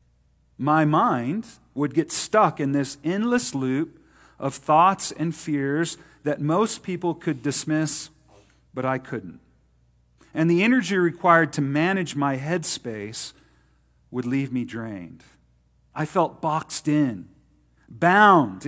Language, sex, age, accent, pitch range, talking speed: English, male, 40-59, American, 120-175 Hz, 120 wpm